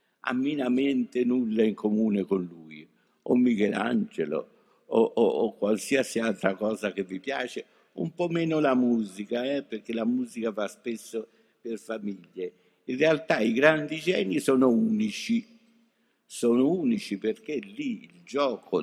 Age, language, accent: 60-79, Italian, native